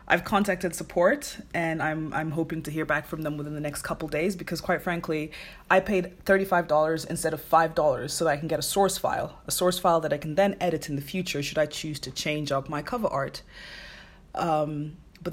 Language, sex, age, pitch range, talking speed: English, female, 20-39, 155-205 Hz, 220 wpm